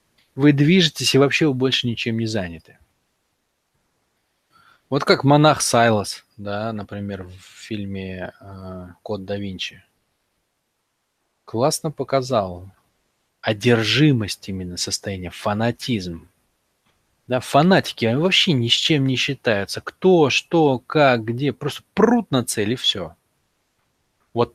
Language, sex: Russian, male